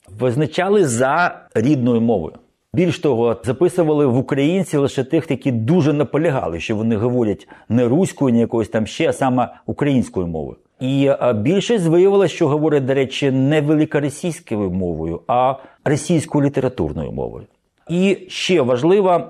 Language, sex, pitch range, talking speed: Ukrainian, male, 110-150 Hz, 135 wpm